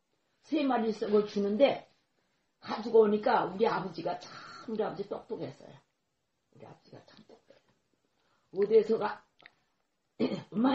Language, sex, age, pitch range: Korean, female, 40-59, 165-225 Hz